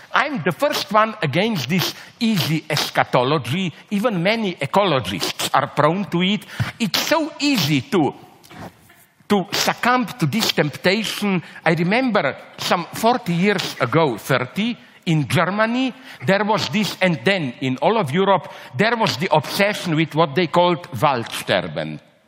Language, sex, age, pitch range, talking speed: English, male, 50-69, 150-210 Hz, 135 wpm